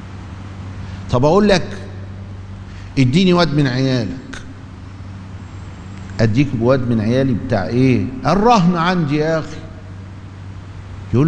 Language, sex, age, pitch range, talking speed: Arabic, male, 50-69, 95-150 Hz, 95 wpm